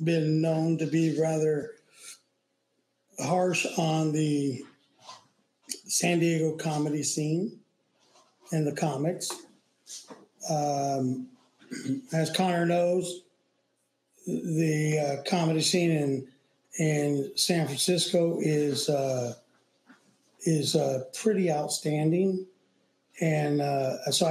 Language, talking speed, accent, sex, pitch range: English, 85 wpm, American, male, 145-170 Hz